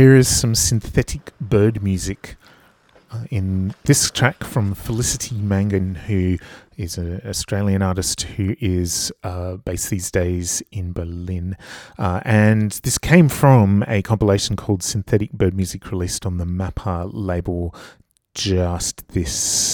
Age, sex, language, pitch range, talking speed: 30-49, male, English, 90-110 Hz, 135 wpm